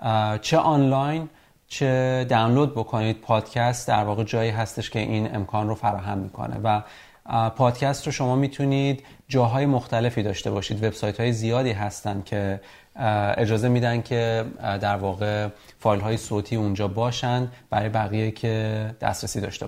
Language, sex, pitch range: Persian, male, 105-130 Hz